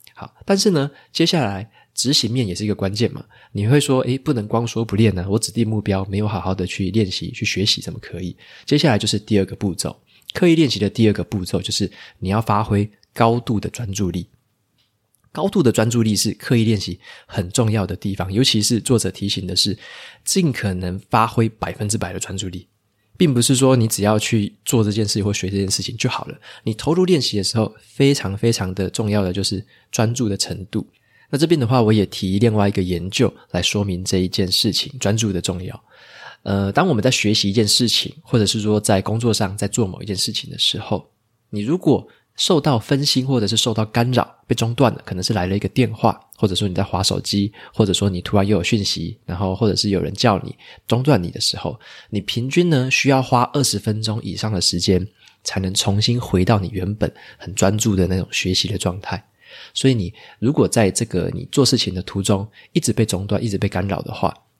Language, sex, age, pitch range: Chinese, male, 20-39, 100-120 Hz